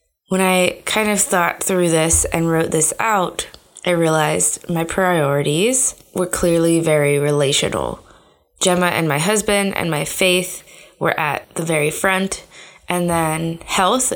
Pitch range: 160-190 Hz